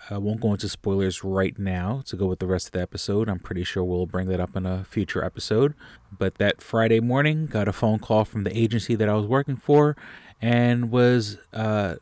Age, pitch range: 30-49, 95-125 Hz